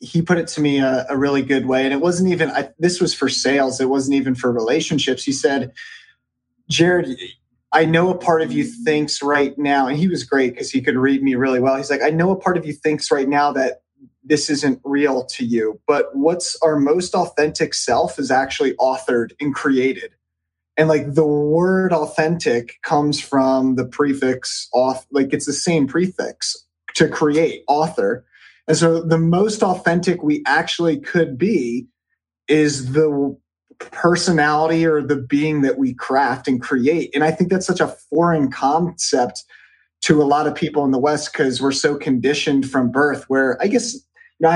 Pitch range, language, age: 135-170 Hz, English, 30-49